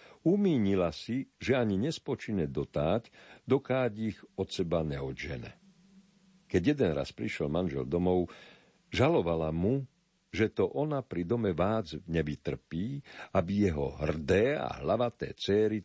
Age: 50-69